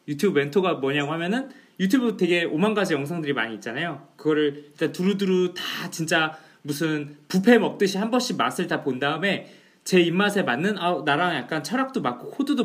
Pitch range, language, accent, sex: 150-225 Hz, Korean, native, male